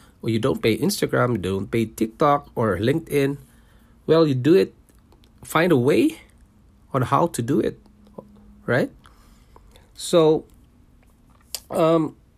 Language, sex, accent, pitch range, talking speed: English, male, Filipino, 105-130 Hz, 120 wpm